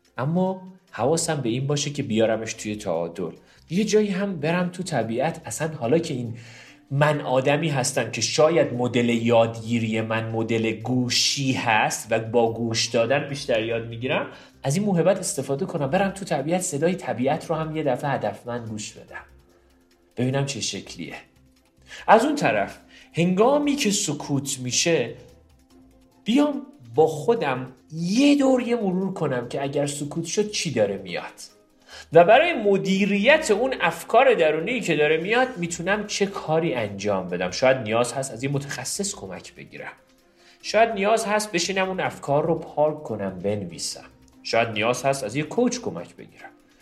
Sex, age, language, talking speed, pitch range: male, 40-59, Persian, 155 wpm, 115-190 Hz